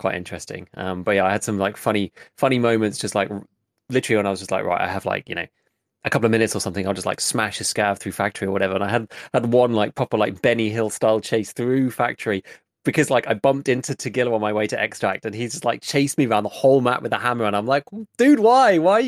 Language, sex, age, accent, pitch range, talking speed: English, male, 20-39, British, 100-130 Hz, 275 wpm